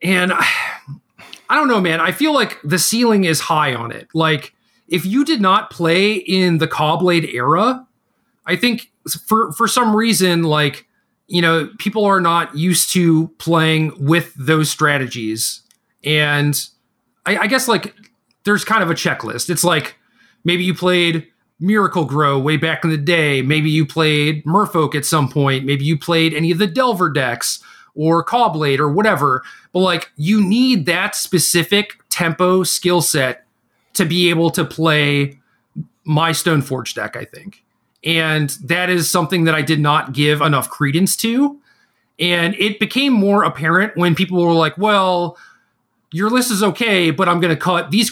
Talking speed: 170 wpm